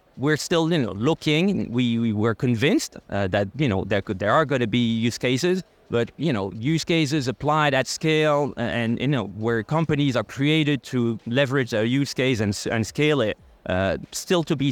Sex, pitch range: male, 115-145 Hz